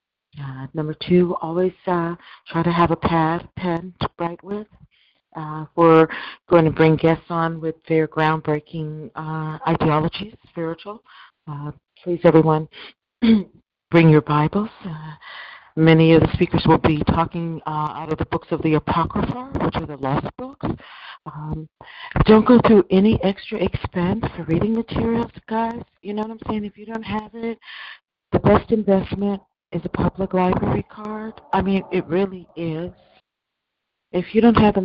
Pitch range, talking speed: 155-190 Hz, 160 wpm